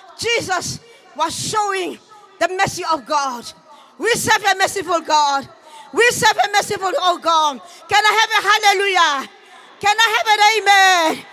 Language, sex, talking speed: English, female, 150 wpm